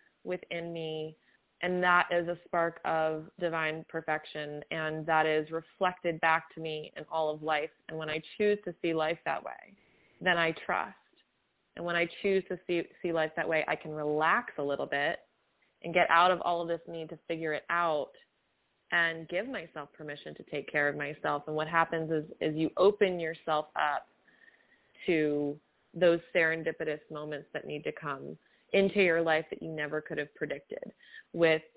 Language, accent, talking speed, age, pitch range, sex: English, American, 185 wpm, 20-39, 155-175 Hz, female